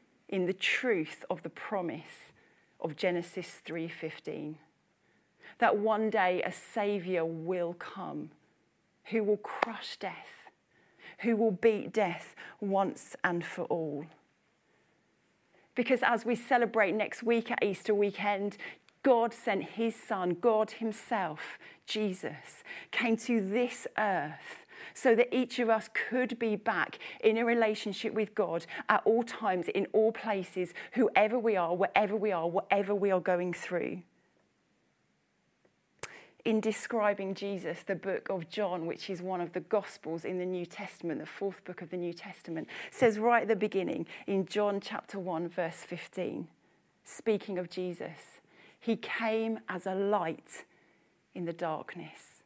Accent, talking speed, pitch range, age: British, 145 wpm, 180-225 Hz, 40-59